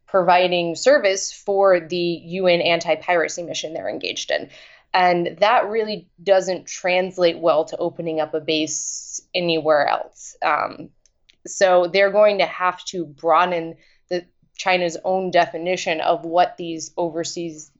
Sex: female